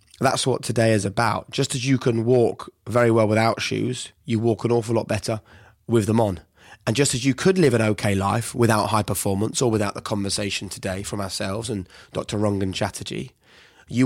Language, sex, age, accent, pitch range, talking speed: English, male, 20-39, British, 100-115 Hz, 200 wpm